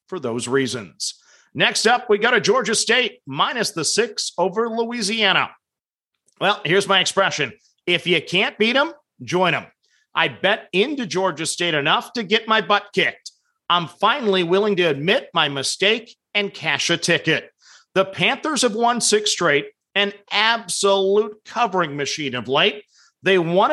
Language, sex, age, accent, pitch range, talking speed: English, male, 50-69, American, 180-225 Hz, 155 wpm